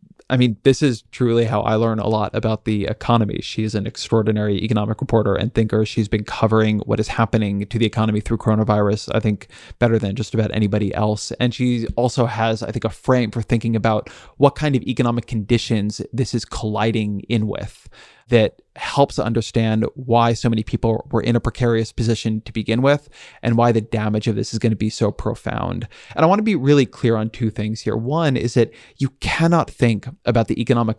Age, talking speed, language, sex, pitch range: 20-39, 210 wpm, English, male, 110-120 Hz